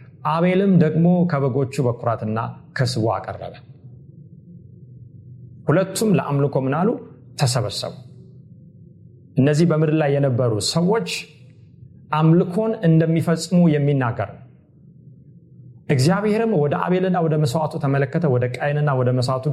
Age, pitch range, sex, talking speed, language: 40-59, 125-160 Hz, male, 85 wpm, Amharic